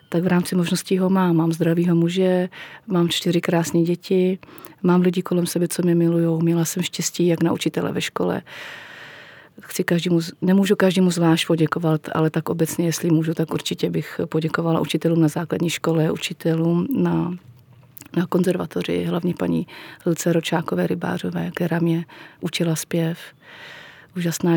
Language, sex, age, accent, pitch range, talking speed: Czech, female, 30-49, native, 160-175 Hz, 150 wpm